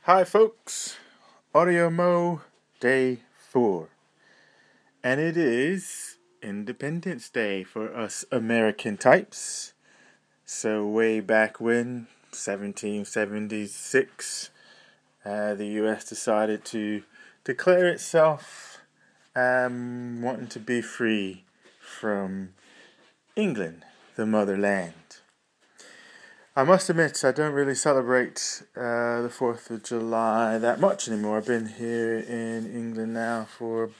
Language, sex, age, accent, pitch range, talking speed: English, male, 20-39, British, 105-135 Hz, 100 wpm